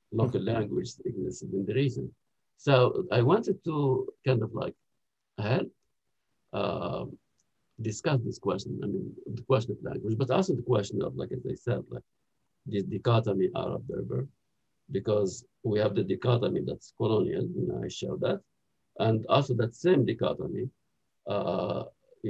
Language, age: English, 50-69